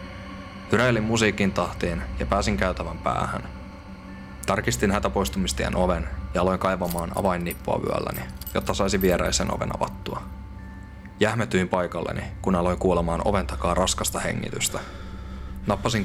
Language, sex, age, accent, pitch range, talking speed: Finnish, male, 20-39, native, 75-95 Hz, 110 wpm